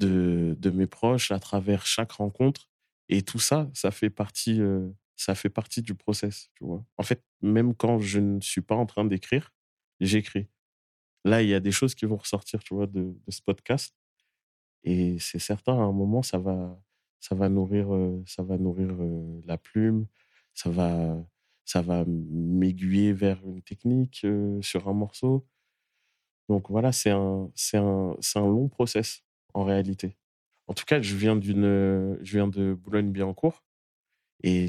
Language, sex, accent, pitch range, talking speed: French, male, French, 90-105 Hz, 180 wpm